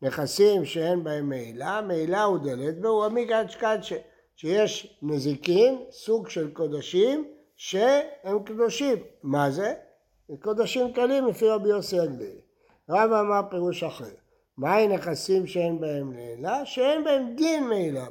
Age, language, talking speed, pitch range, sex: 60-79, Hebrew, 130 wpm, 165-240 Hz, male